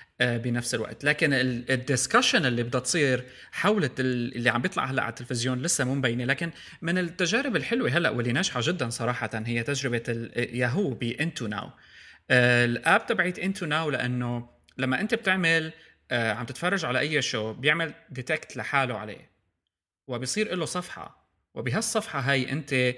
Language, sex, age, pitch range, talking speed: Arabic, male, 30-49, 120-155 Hz, 150 wpm